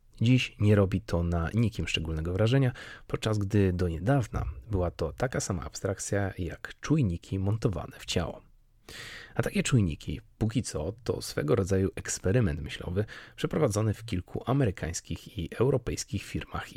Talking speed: 140 wpm